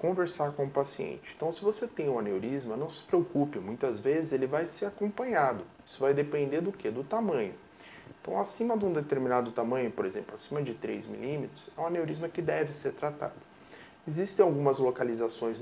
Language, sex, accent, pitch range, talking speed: Portuguese, male, Brazilian, 130-190 Hz, 185 wpm